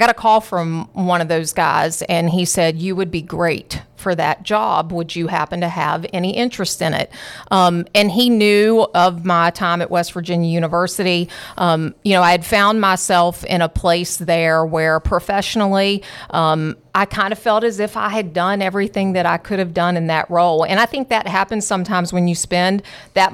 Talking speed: 205 wpm